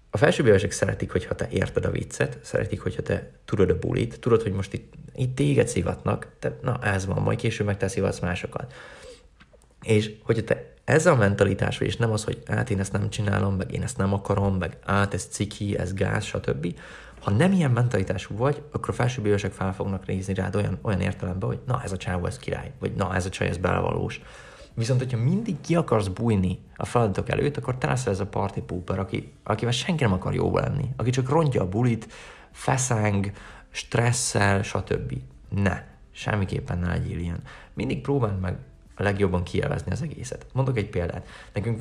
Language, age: Hungarian, 30-49